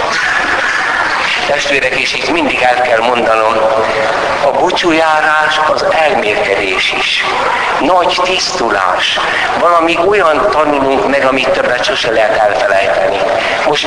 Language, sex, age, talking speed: Hungarian, male, 60-79, 105 wpm